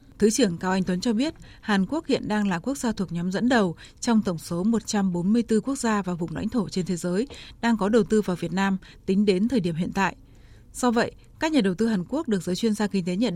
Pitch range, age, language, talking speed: 180-230 Hz, 20-39, Vietnamese, 265 wpm